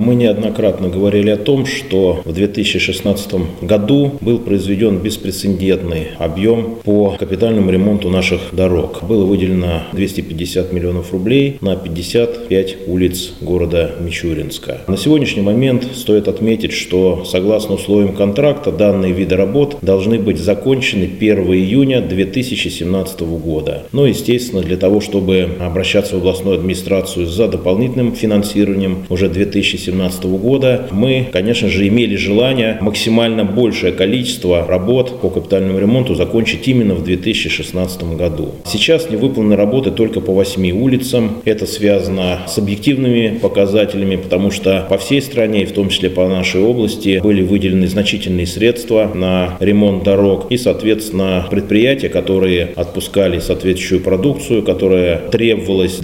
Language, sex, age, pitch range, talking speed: Russian, male, 30-49, 90-110 Hz, 125 wpm